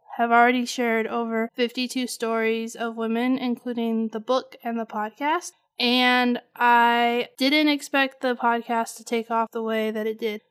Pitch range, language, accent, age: 230-260 Hz, English, American, 20-39